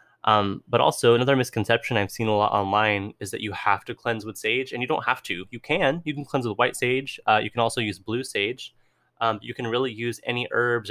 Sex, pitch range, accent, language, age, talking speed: male, 105-125 Hz, American, English, 20-39, 250 wpm